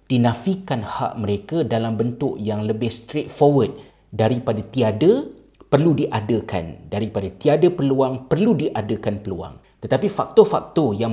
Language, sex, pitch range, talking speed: Malay, male, 95-120 Hz, 120 wpm